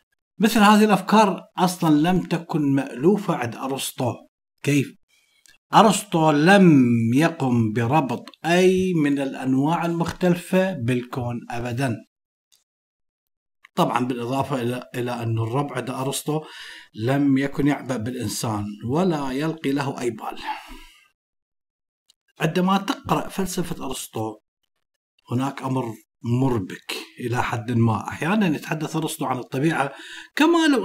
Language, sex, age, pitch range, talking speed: Arabic, male, 50-69, 130-180 Hz, 105 wpm